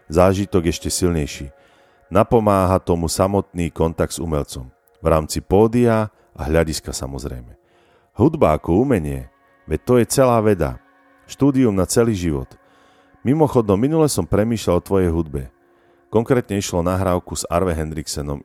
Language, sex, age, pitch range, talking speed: Slovak, male, 40-59, 75-100 Hz, 130 wpm